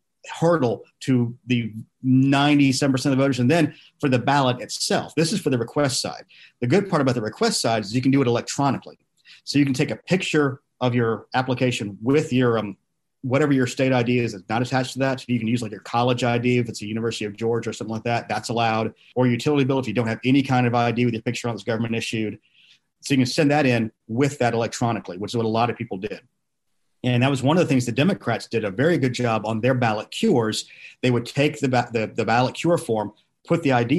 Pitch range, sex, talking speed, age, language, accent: 115-135 Hz, male, 245 wpm, 40-59, English, American